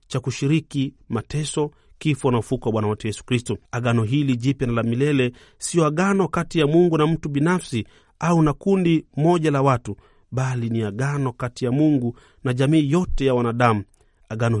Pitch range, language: 120-155 Hz, Swahili